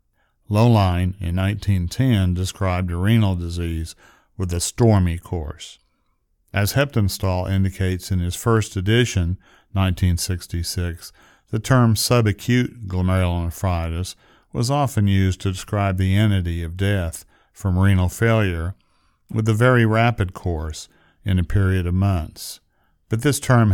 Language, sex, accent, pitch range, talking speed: English, male, American, 90-105 Hz, 120 wpm